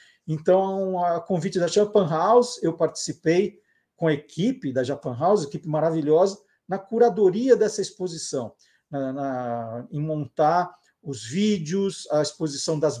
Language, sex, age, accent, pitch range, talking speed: Portuguese, male, 50-69, Brazilian, 155-205 Hz, 125 wpm